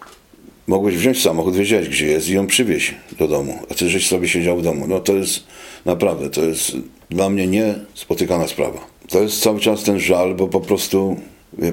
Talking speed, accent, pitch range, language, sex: 195 wpm, native, 85-110 Hz, Polish, male